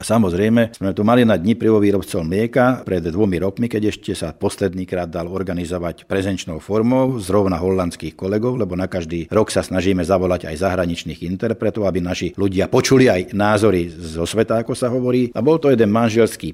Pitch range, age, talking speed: 90-110 Hz, 50-69, 180 wpm